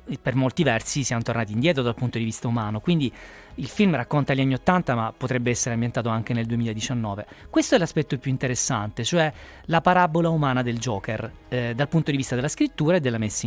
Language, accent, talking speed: Italian, native, 205 wpm